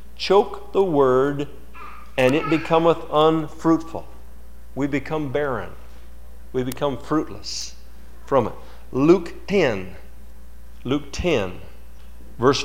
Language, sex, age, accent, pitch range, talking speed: English, male, 50-69, American, 115-165 Hz, 95 wpm